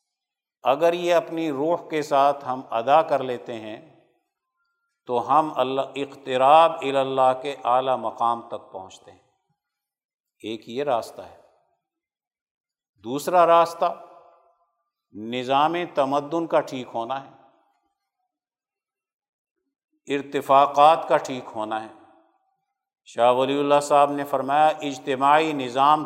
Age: 50-69